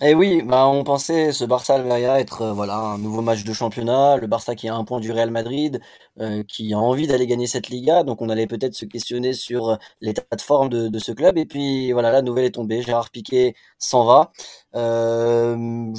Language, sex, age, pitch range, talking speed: French, male, 20-39, 115-140 Hz, 220 wpm